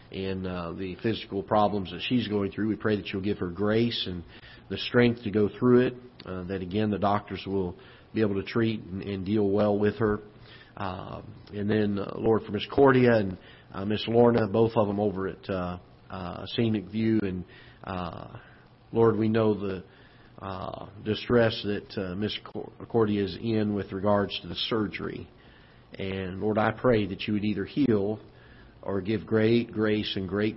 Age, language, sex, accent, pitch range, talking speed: 40-59, English, male, American, 95-110 Hz, 185 wpm